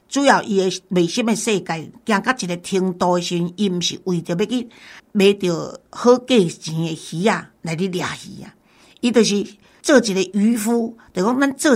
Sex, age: female, 50-69